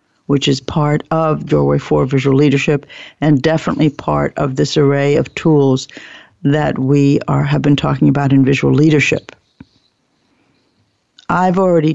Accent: American